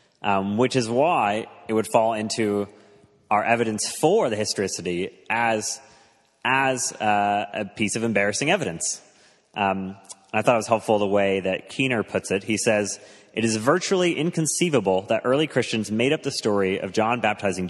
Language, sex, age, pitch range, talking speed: English, male, 30-49, 105-140 Hz, 165 wpm